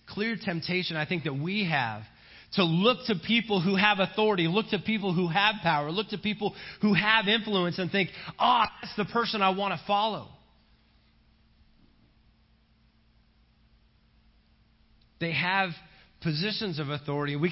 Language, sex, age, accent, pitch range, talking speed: English, male, 30-49, American, 135-200 Hz, 145 wpm